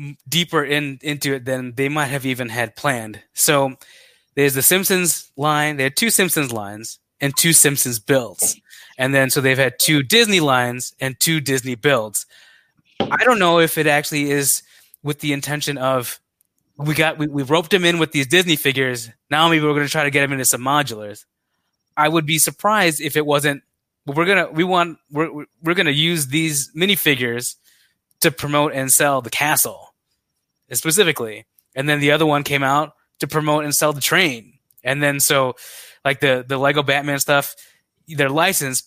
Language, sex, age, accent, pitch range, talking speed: English, male, 20-39, American, 135-155 Hz, 185 wpm